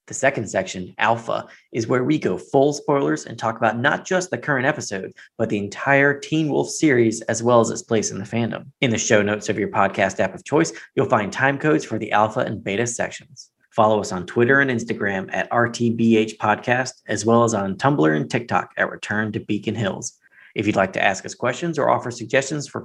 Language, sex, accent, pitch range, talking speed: English, male, American, 110-135 Hz, 220 wpm